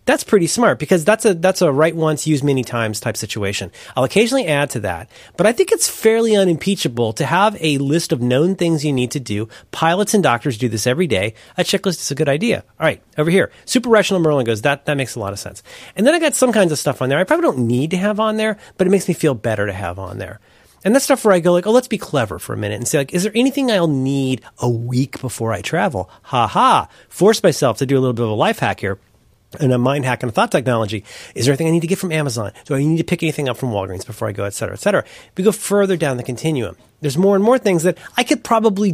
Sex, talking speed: male, 280 wpm